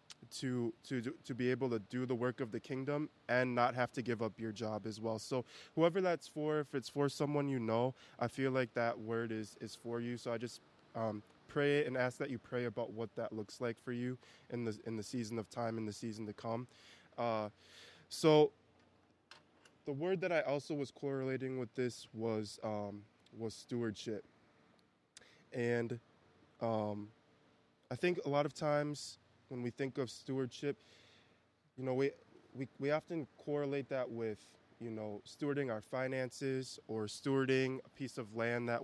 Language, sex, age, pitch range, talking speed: English, male, 20-39, 115-135 Hz, 185 wpm